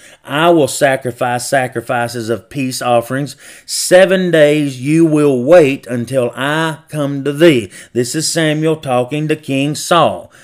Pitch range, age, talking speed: 130-170 Hz, 30-49, 140 wpm